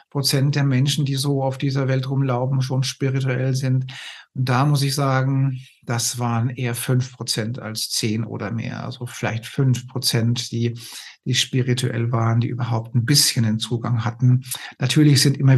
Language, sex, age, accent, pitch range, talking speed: German, male, 50-69, German, 120-135 Hz, 170 wpm